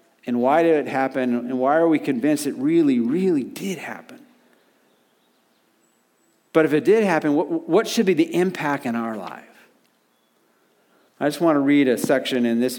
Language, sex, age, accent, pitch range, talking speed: English, male, 50-69, American, 125-165 Hz, 180 wpm